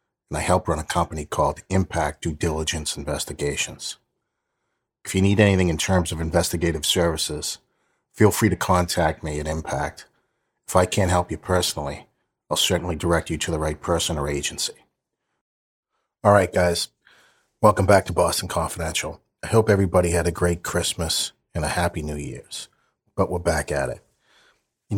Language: English